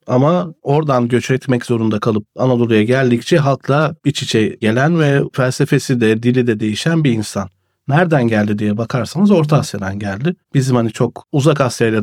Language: Turkish